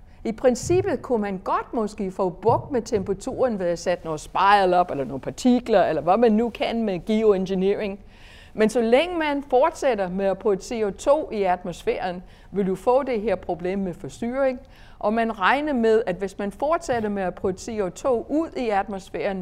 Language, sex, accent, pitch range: Danish, female, native, 185-245 Hz